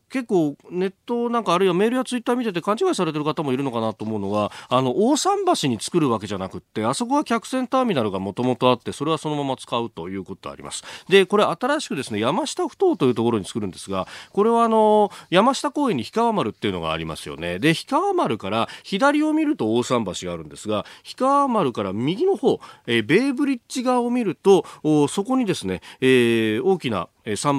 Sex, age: male, 40-59